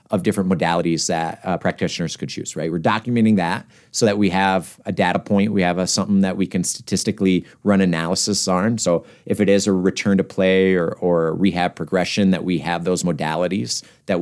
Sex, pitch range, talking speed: male, 90-110 Hz, 205 wpm